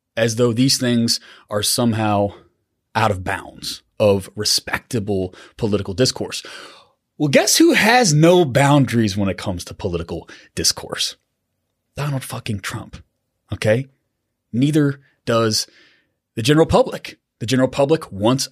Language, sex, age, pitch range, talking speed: English, male, 30-49, 105-140 Hz, 125 wpm